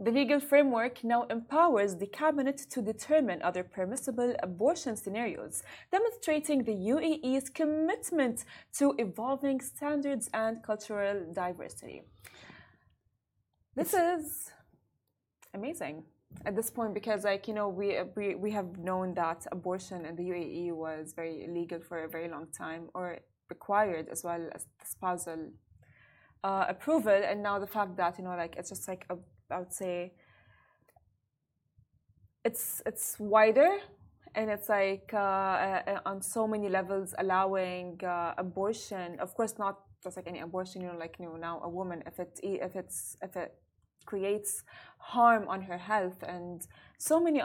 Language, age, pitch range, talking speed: Arabic, 20-39, 180-235 Hz, 150 wpm